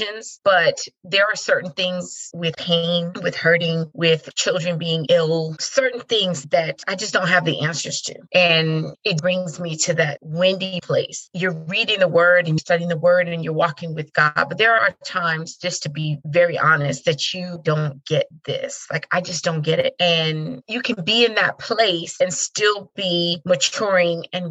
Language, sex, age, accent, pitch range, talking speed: English, female, 30-49, American, 165-190 Hz, 185 wpm